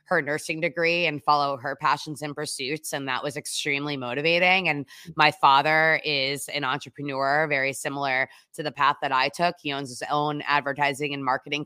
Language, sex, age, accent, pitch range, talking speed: English, female, 20-39, American, 140-160 Hz, 180 wpm